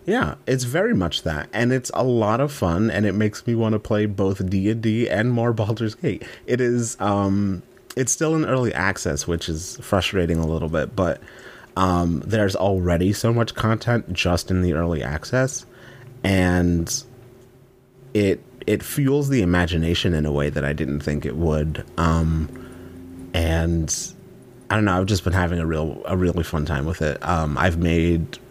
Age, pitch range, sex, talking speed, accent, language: 30-49, 80-105 Hz, male, 185 wpm, American, English